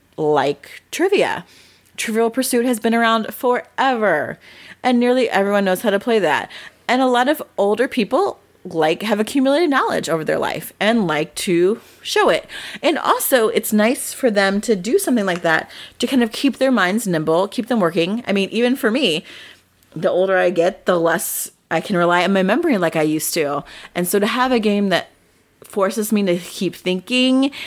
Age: 30-49